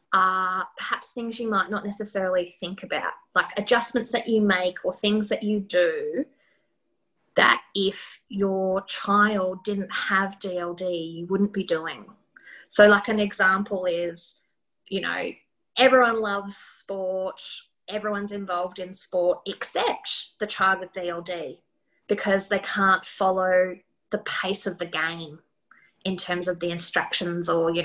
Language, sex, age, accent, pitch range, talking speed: English, female, 20-39, Australian, 180-205 Hz, 140 wpm